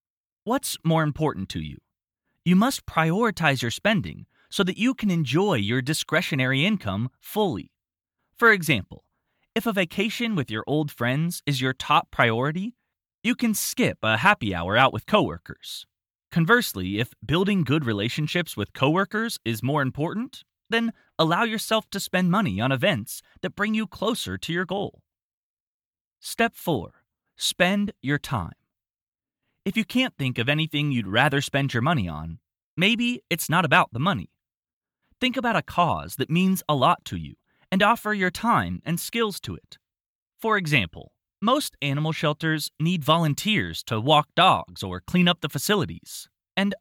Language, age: English, 20-39